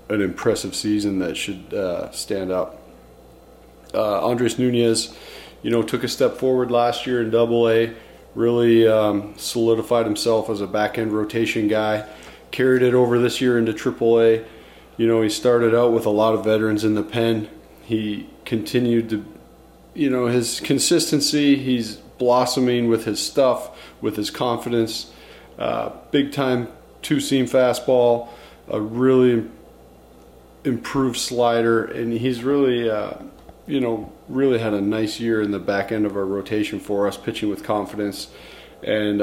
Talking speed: 155 wpm